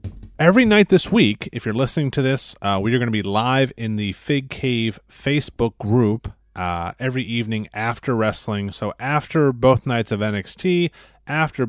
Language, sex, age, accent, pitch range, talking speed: English, male, 30-49, American, 105-135 Hz, 175 wpm